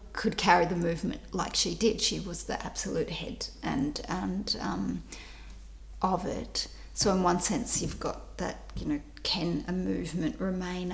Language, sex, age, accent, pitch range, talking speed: English, female, 30-49, Australian, 165-200 Hz, 165 wpm